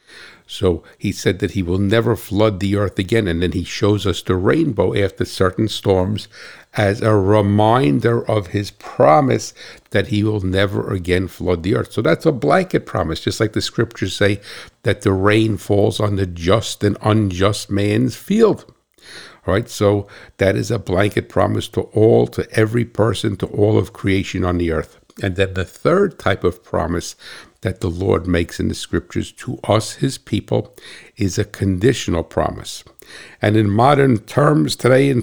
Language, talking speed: English, 175 wpm